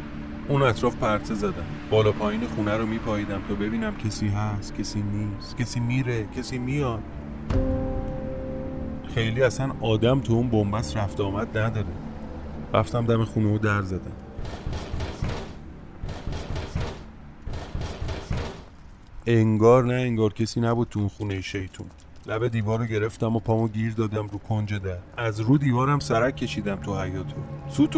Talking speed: 130 wpm